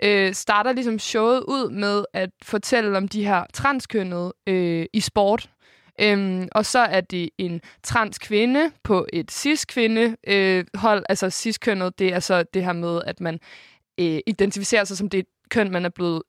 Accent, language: native, Danish